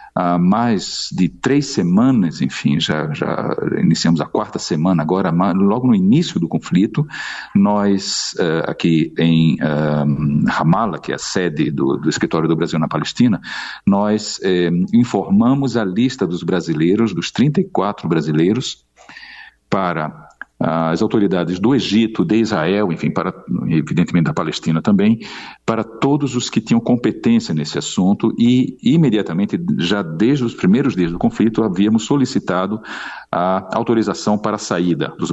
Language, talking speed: Portuguese, 135 wpm